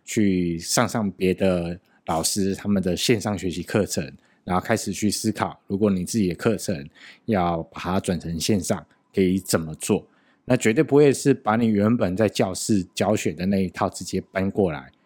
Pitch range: 95-110 Hz